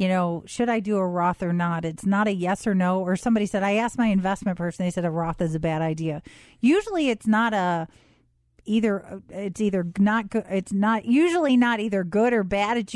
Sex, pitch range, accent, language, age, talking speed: female, 180-220 Hz, American, English, 40-59, 225 wpm